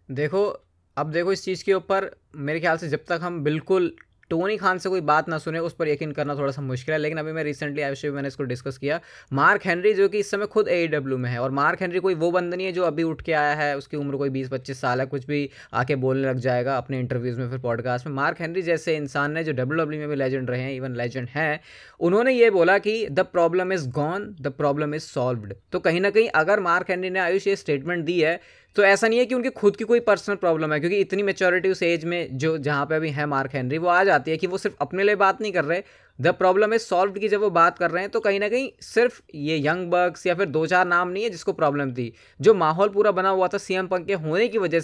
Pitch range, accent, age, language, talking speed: 145-195 Hz, native, 20-39, Hindi, 270 wpm